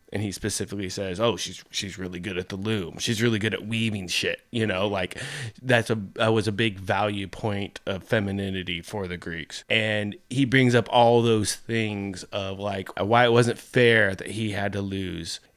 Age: 20-39